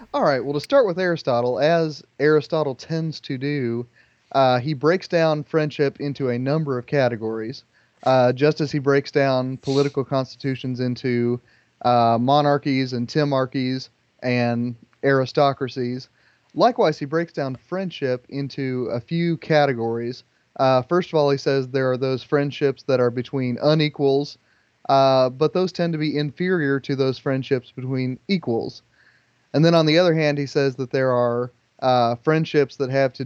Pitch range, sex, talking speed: 125-150 Hz, male, 160 wpm